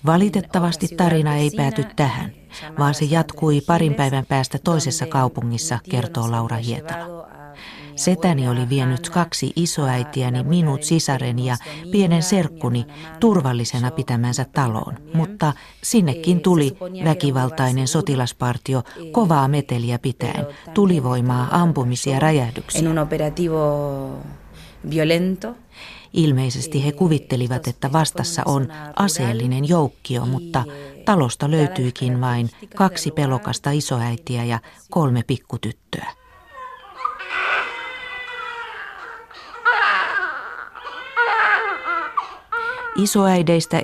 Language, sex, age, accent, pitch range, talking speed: Finnish, female, 40-59, native, 125-170 Hz, 80 wpm